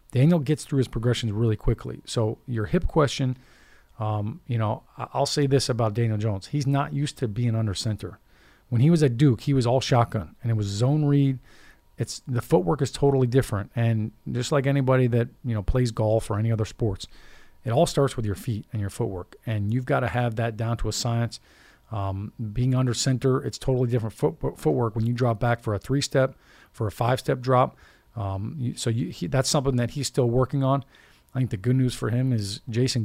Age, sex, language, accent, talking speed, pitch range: 40-59, male, English, American, 215 wpm, 110-130 Hz